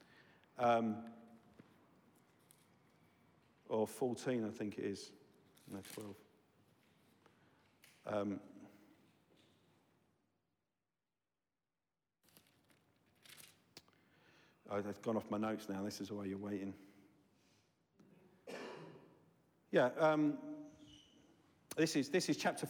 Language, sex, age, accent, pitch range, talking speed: English, male, 50-69, British, 105-135 Hz, 70 wpm